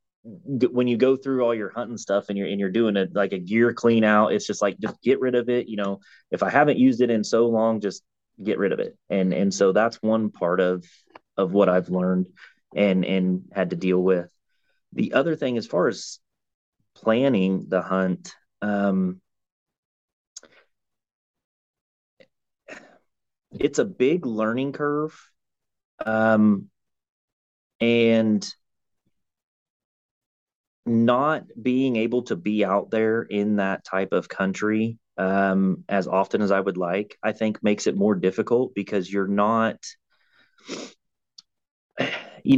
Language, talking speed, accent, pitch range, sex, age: English, 150 wpm, American, 100-120 Hz, male, 30-49